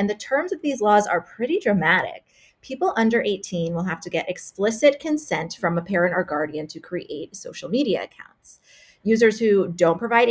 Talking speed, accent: 185 wpm, American